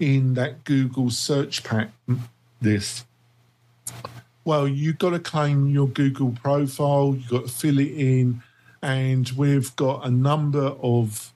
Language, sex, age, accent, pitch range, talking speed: English, male, 50-69, British, 120-140 Hz, 135 wpm